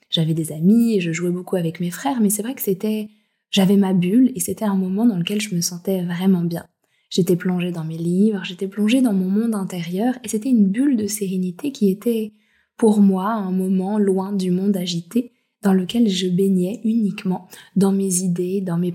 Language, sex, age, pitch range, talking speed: French, female, 20-39, 185-215 Hz, 210 wpm